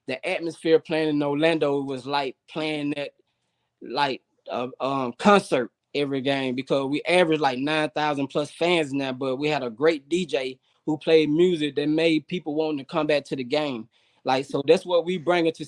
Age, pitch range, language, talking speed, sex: 20-39, 145-170 Hz, English, 190 wpm, male